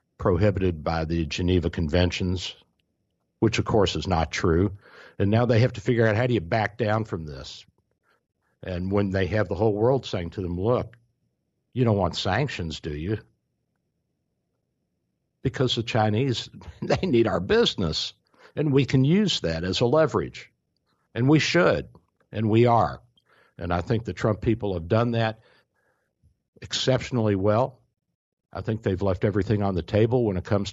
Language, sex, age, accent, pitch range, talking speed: English, male, 60-79, American, 90-115 Hz, 165 wpm